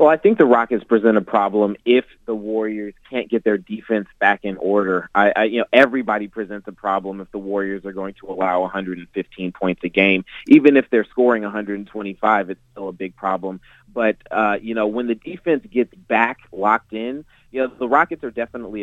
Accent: American